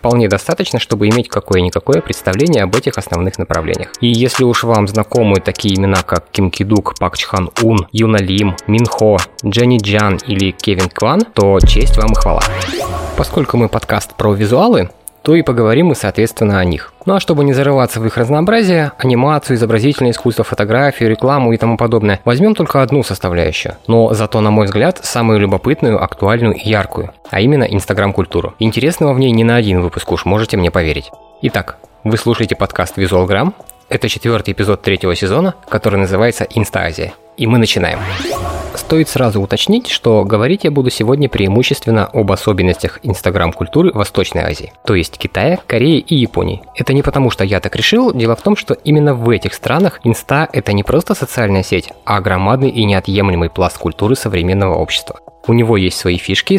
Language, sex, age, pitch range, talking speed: Russian, male, 20-39, 100-125 Hz, 175 wpm